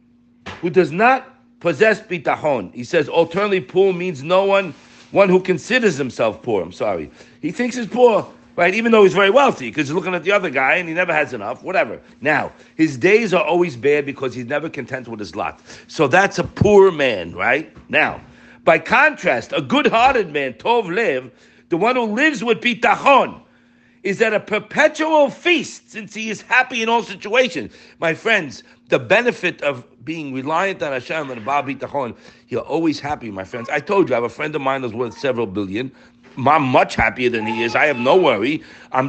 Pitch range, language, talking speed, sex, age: 135-220 Hz, English, 200 wpm, male, 50-69